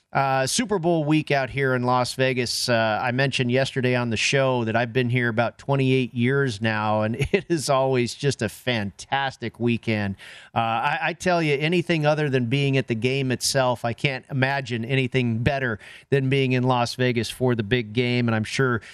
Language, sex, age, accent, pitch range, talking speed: English, male, 40-59, American, 125-160 Hz, 195 wpm